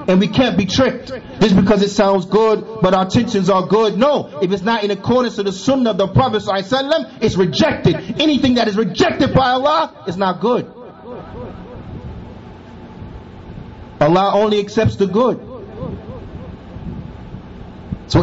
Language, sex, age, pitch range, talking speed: English, male, 30-49, 175-220 Hz, 145 wpm